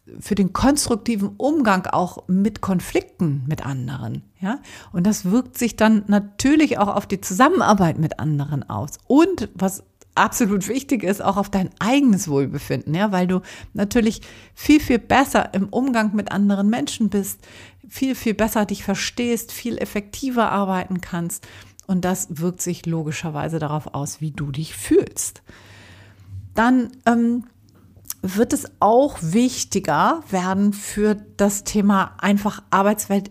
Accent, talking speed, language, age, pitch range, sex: German, 135 wpm, German, 50-69, 170-230 Hz, female